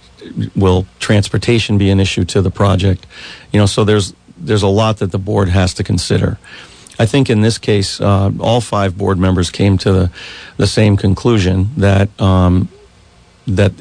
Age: 40-59